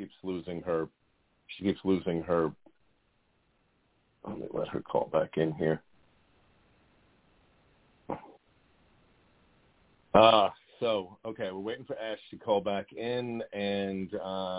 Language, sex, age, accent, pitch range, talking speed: English, male, 40-59, American, 85-110 Hz, 115 wpm